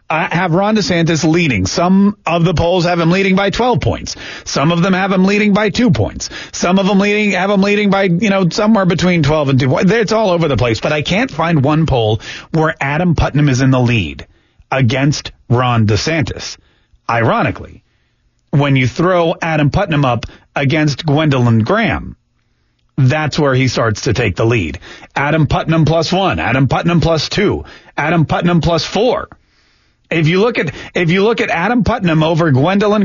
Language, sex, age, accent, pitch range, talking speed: English, male, 30-49, American, 140-195 Hz, 185 wpm